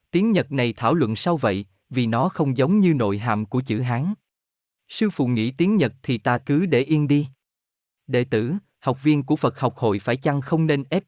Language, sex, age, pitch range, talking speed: Vietnamese, male, 20-39, 110-150 Hz, 220 wpm